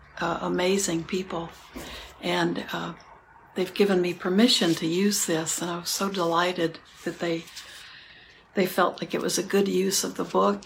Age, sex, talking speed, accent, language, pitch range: 60-79, female, 170 wpm, American, English, 170-200 Hz